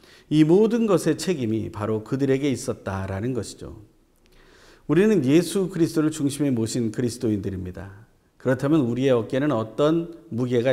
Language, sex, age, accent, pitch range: Korean, male, 40-59, native, 115-165 Hz